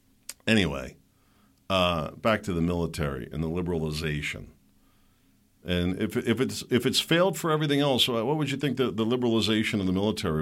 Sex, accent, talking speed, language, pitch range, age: male, American, 155 wpm, English, 95-140 Hz, 50-69